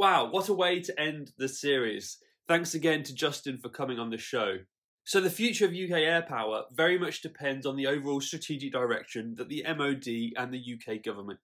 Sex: male